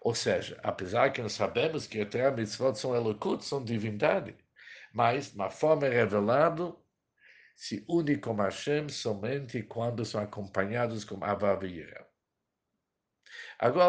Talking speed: 130 wpm